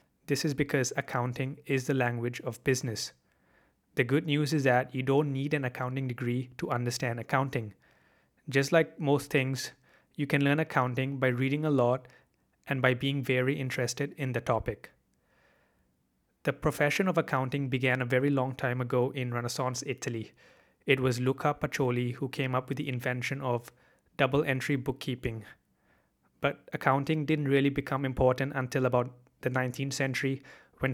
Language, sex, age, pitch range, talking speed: English, male, 20-39, 125-140 Hz, 155 wpm